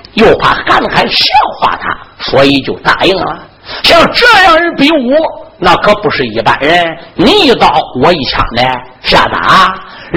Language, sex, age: Chinese, male, 50-69